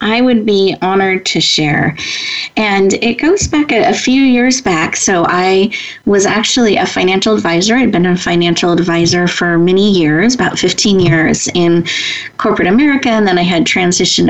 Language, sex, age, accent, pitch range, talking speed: English, female, 30-49, American, 175-220 Hz, 170 wpm